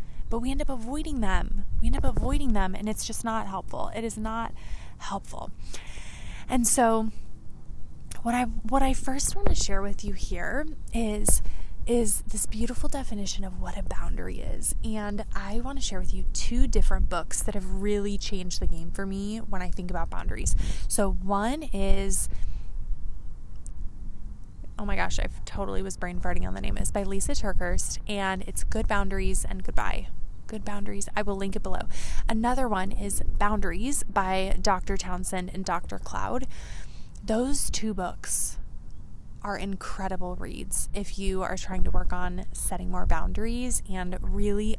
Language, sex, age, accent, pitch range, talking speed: English, female, 20-39, American, 175-220 Hz, 165 wpm